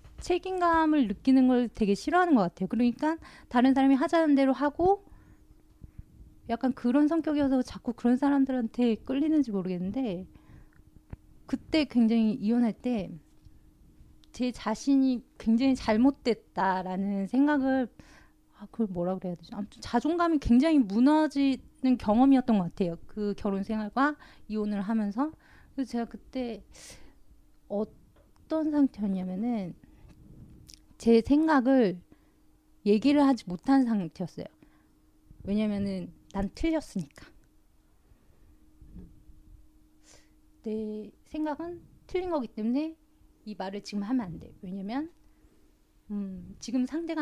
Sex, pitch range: female, 200-280 Hz